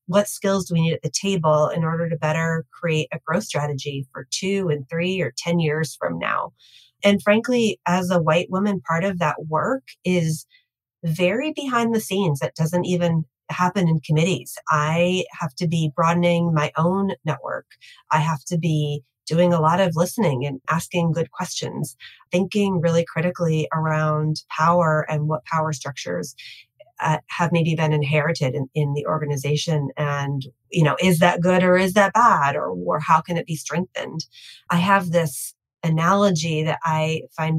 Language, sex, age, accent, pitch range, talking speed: English, female, 30-49, American, 150-175 Hz, 175 wpm